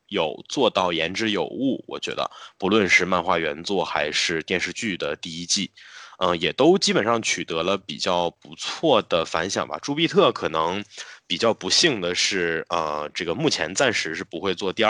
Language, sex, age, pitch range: Chinese, male, 20-39, 85-115 Hz